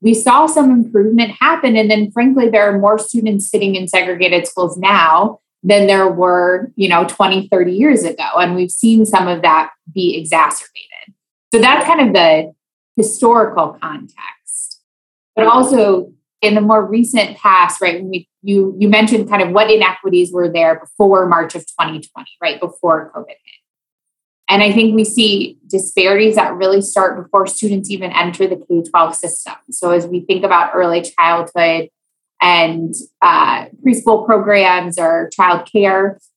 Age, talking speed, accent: 20-39, 160 wpm, American